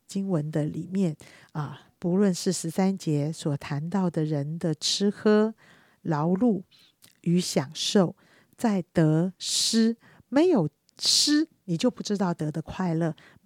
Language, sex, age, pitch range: Chinese, female, 50-69, 150-190 Hz